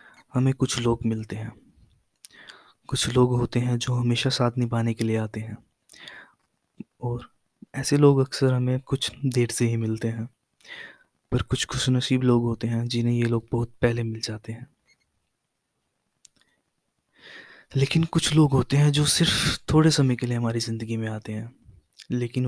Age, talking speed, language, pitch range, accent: 20-39, 160 wpm, Hindi, 120-135 Hz, native